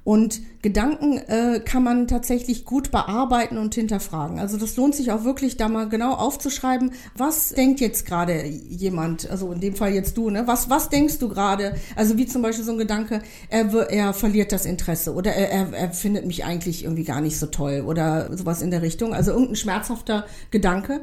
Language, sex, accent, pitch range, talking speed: German, female, German, 190-245 Hz, 195 wpm